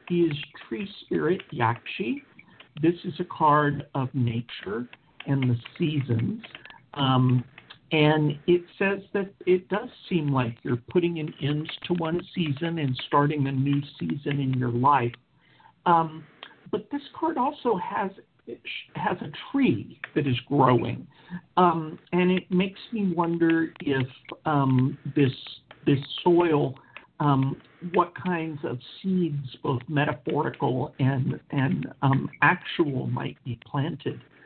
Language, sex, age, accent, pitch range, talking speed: English, male, 50-69, American, 130-175 Hz, 130 wpm